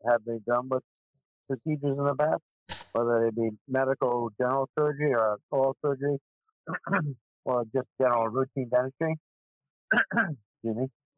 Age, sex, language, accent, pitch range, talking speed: 50-69, male, English, American, 100-125 Hz, 125 wpm